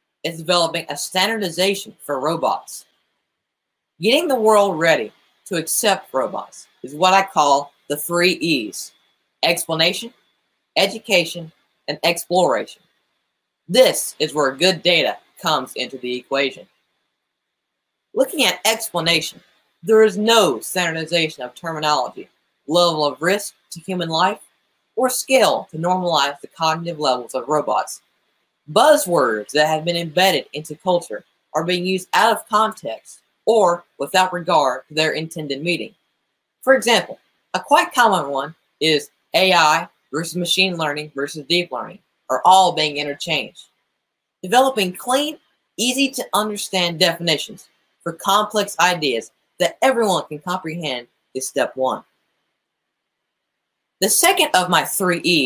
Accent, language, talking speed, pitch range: American, English, 125 wpm, 155-195 Hz